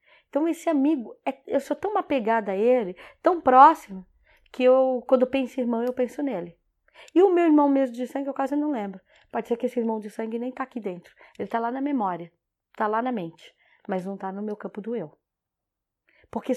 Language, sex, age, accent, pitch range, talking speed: Portuguese, female, 20-39, Brazilian, 205-255 Hz, 215 wpm